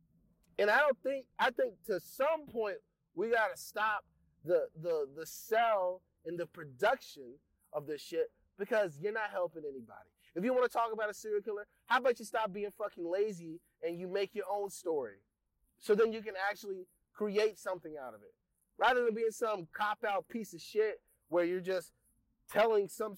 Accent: American